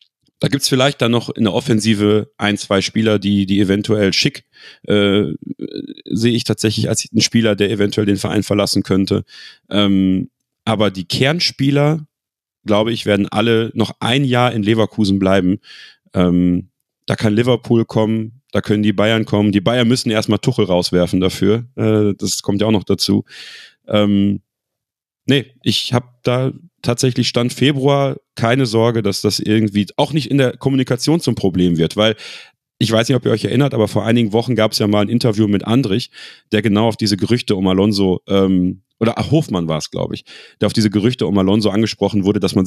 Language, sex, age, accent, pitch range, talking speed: German, male, 30-49, German, 100-120 Hz, 185 wpm